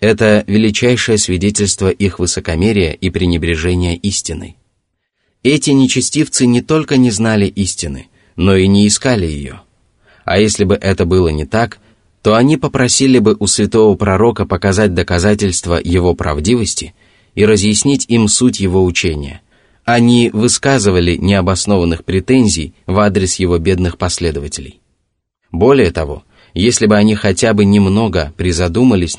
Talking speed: 125 wpm